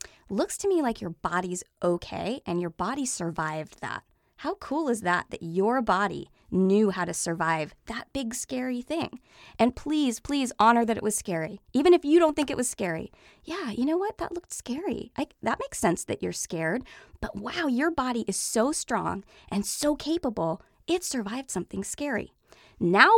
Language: English